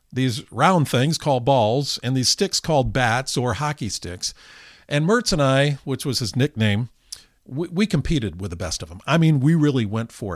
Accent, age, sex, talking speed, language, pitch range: American, 50-69, male, 205 wpm, English, 115-160 Hz